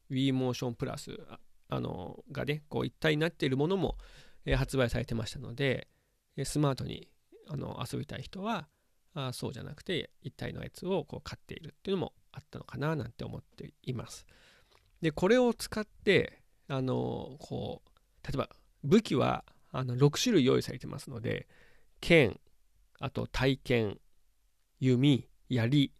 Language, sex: Japanese, male